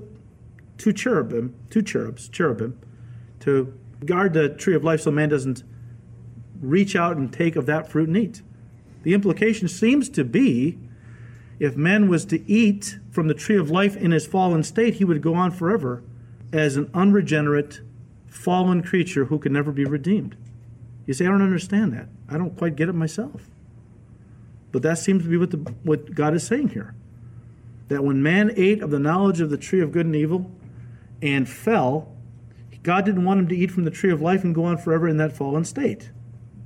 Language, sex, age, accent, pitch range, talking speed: English, male, 40-59, American, 120-175 Hz, 190 wpm